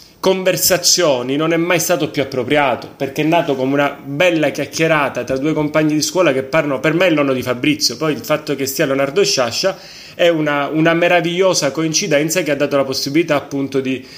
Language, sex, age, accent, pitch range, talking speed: Italian, male, 30-49, native, 145-195 Hz, 190 wpm